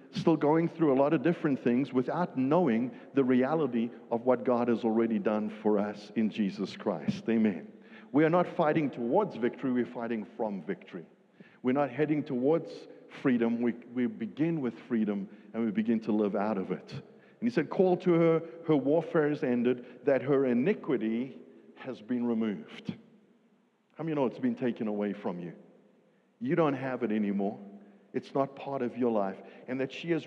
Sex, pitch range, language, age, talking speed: male, 120-190 Hz, English, 50-69, 180 wpm